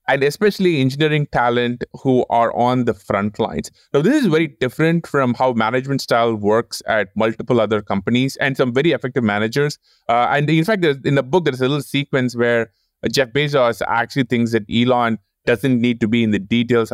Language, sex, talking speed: English, male, 200 wpm